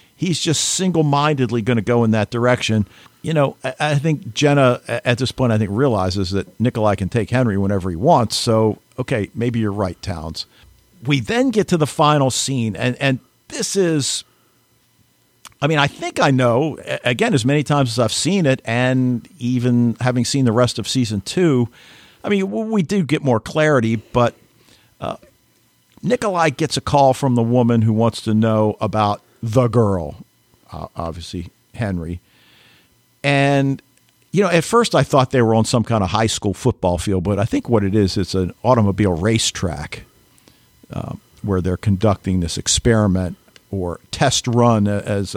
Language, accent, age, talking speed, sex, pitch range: English, American, 50-69, 175 wpm, male, 105-140 Hz